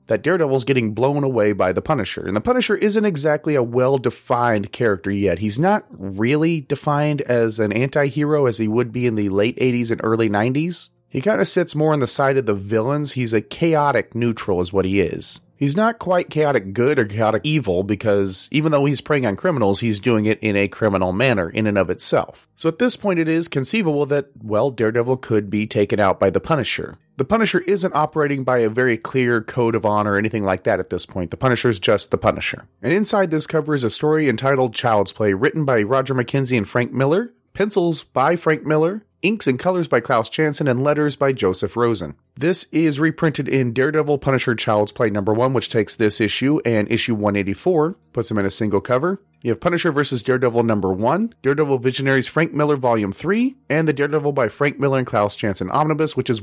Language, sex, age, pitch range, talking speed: English, male, 30-49, 110-150 Hz, 215 wpm